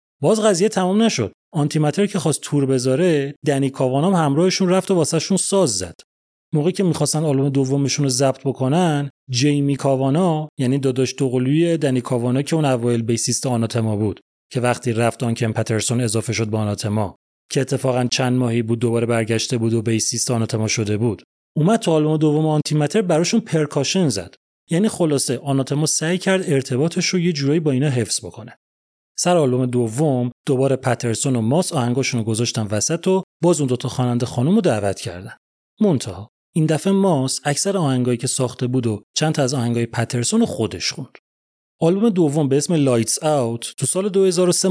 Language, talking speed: Persian, 170 wpm